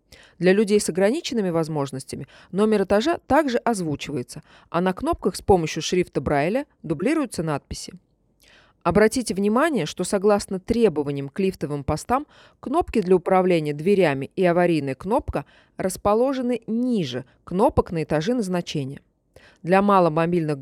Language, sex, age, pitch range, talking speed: Russian, female, 20-39, 160-225 Hz, 120 wpm